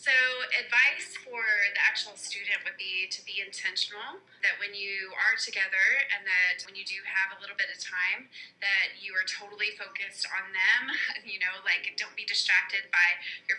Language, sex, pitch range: English, female, 195-245 Hz